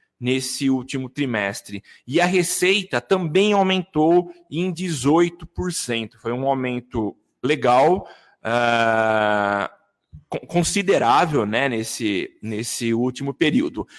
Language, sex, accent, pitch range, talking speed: Portuguese, male, Brazilian, 130-180 Hz, 90 wpm